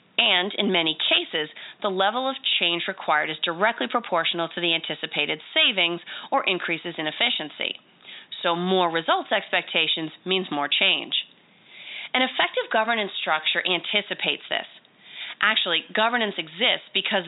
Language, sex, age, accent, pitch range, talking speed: English, female, 30-49, American, 170-225 Hz, 130 wpm